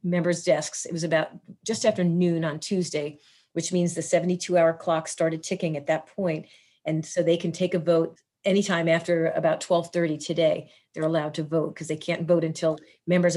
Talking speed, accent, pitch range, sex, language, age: 190 wpm, American, 165-180 Hz, female, English, 40-59